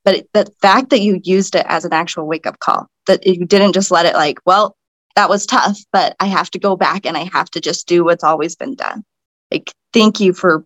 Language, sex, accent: English, female, American